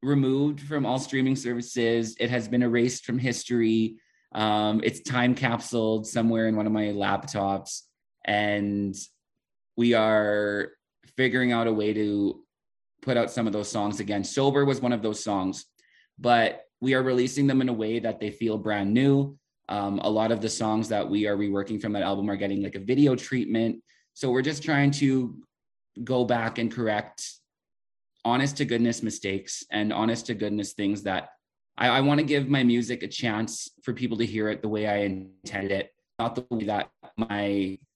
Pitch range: 105-130 Hz